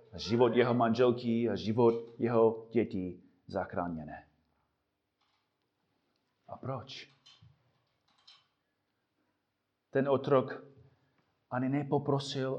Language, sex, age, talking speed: Czech, male, 30-49, 65 wpm